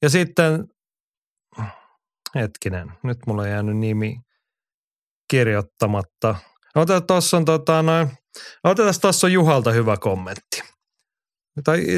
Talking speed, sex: 85 wpm, male